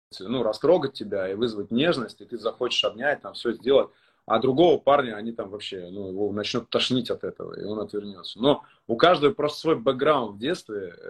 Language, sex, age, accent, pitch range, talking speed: Russian, male, 30-49, native, 110-145 Hz, 190 wpm